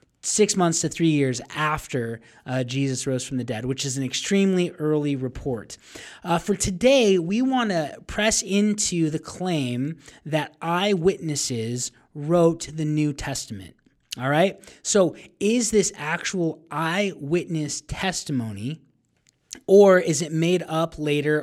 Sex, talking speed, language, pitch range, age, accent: male, 135 wpm, English, 135-180 Hz, 20-39, American